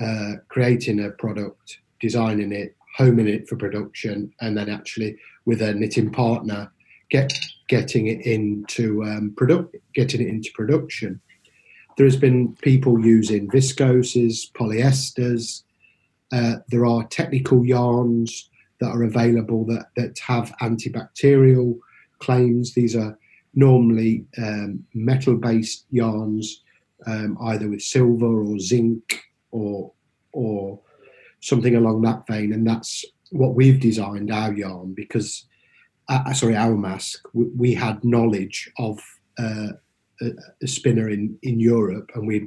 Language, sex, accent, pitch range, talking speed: English, male, British, 105-125 Hz, 130 wpm